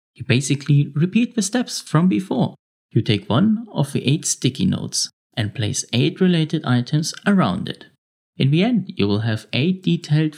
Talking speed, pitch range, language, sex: 175 wpm, 130-180 Hz, English, male